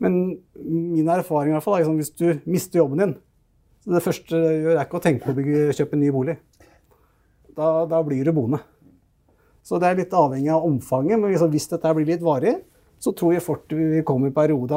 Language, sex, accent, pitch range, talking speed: English, male, Norwegian, 135-165 Hz, 235 wpm